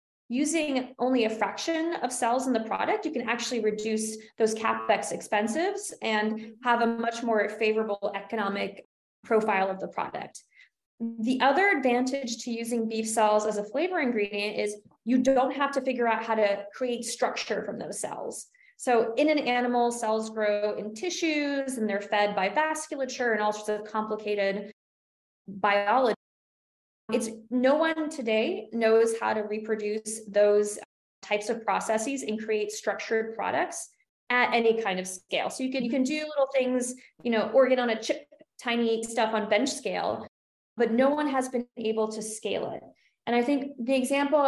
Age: 20-39